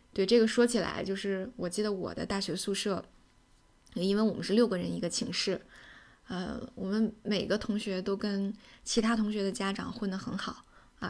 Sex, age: female, 10-29